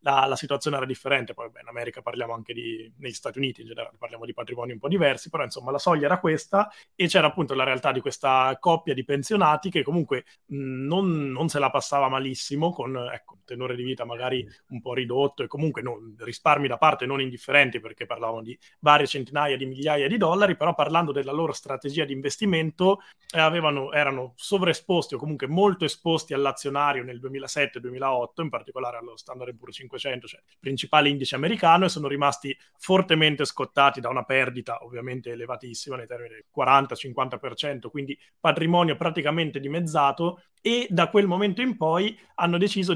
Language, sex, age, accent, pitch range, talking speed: Italian, male, 30-49, native, 130-165 Hz, 180 wpm